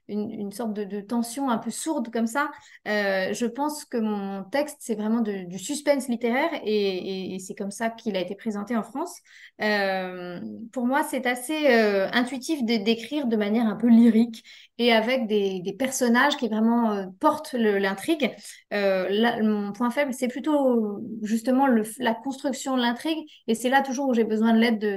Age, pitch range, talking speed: 20-39, 210-245 Hz, 195 wpm